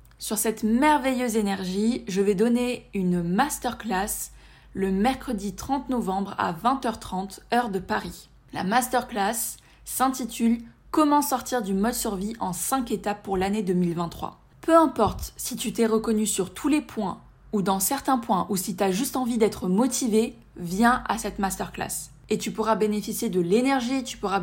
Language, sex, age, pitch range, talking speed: French, female, 20-39, 195-245 Hz, 165 wpm